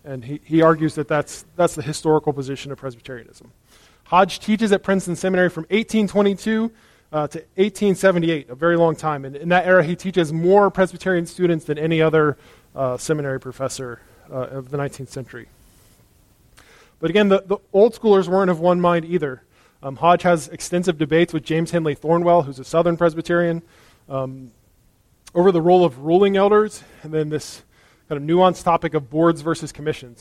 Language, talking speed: English, 175 wpm